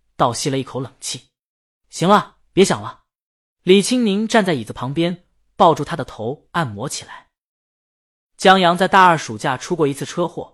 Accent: native